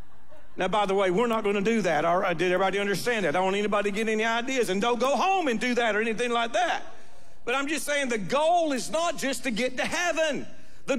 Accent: American